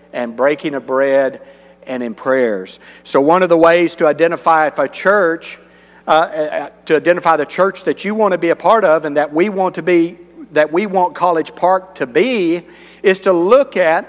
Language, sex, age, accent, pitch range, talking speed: English, male, 50-69, American, 150-185 Hz, 200 wpm